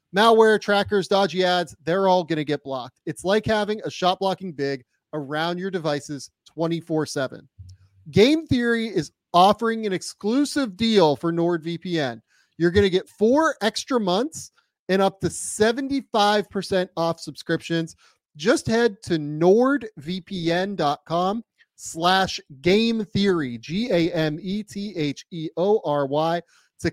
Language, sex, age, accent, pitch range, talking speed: English, male, 30-49, American, 145-195 Hz, 115 wpm